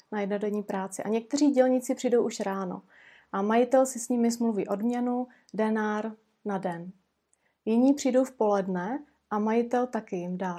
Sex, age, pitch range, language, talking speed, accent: female, 30-49, 200-250 Hz, Czech, 160 wpm, native